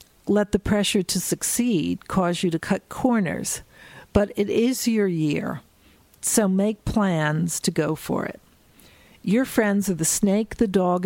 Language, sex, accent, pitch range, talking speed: English, female, American, 170-205 Hz, 155 wpm